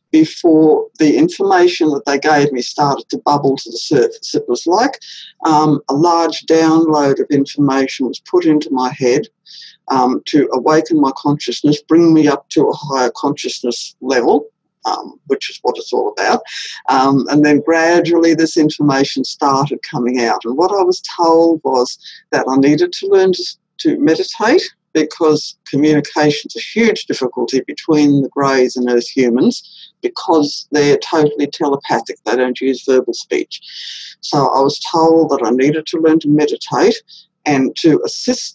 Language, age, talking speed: English, 50-69, 165 wpm